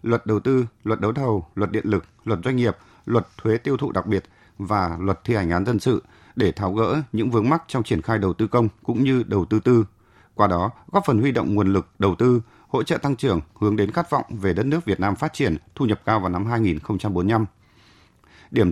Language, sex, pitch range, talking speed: Vietnamese, male, 100-125 Hz, 235 wpm